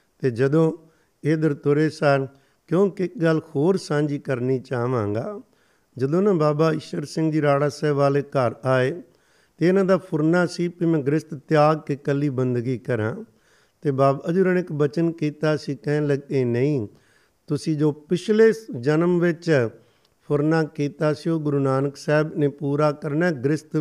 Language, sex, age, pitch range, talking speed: Punjabi, male, 50-69, 140-160 Hz, 155 wpm